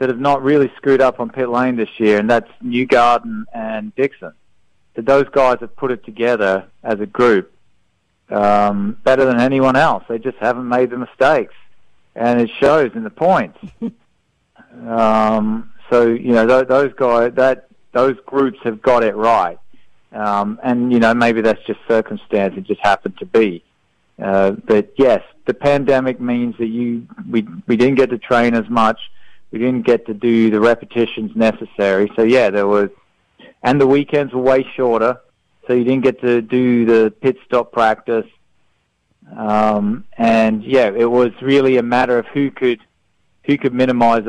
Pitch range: 105-125 Hz